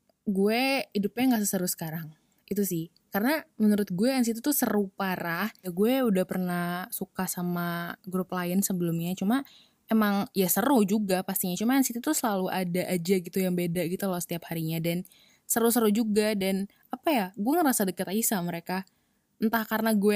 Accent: native